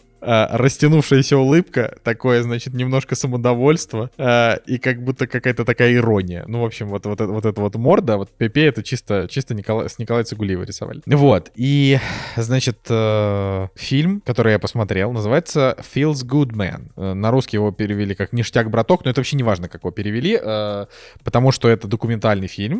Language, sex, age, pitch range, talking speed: Russian, male, 20-39, 100-125 Hz, 180 wpm